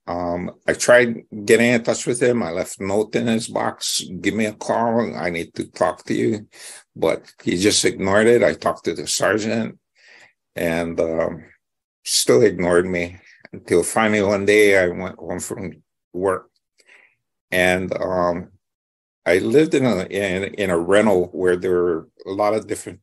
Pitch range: 85-105 Hz